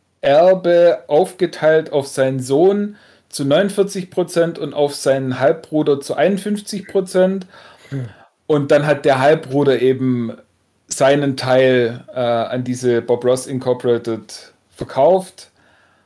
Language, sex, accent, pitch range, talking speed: German, male, German, 120-150 Hz, 105 wpm